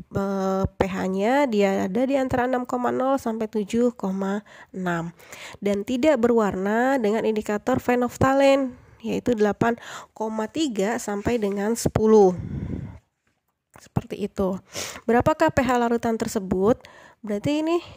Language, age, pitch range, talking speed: Indonesian, 20-39, 205-255 Hz, 95 wpm